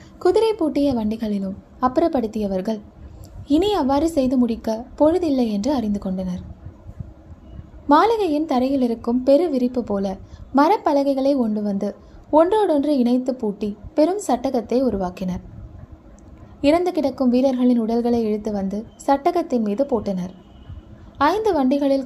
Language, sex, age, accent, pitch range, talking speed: Tamil, female, 20-39, native, 215-285 Hz, 105 wpm